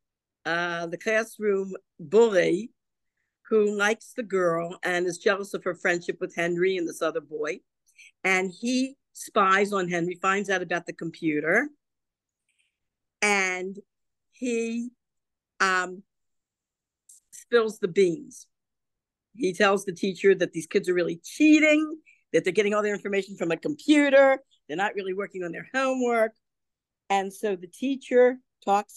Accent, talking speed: American, 140 wpm